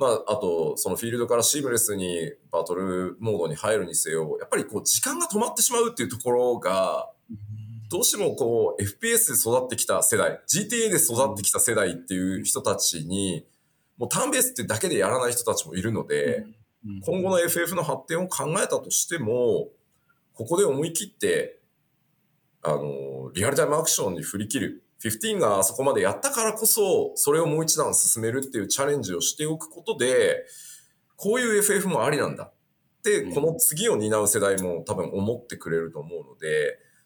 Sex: male